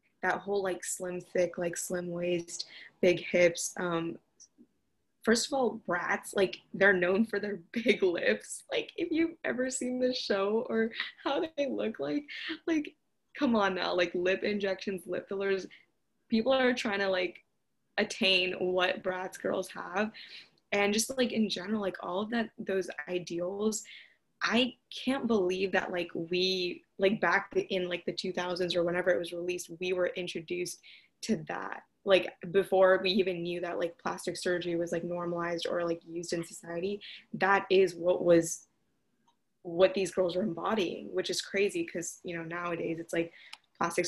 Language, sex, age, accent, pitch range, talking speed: English, female, 20-39, American, 175-205 Hz, 165 wpm